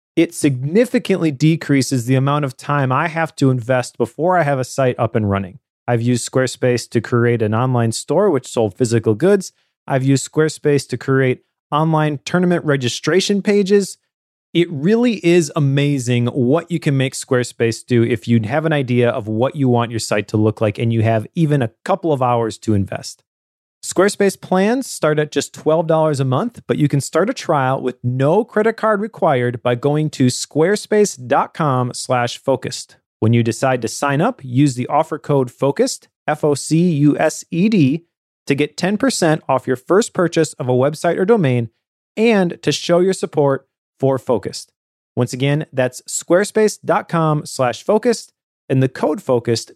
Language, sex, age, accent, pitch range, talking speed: English, male, 30-49, American, 125-165 Hz, 170 wpm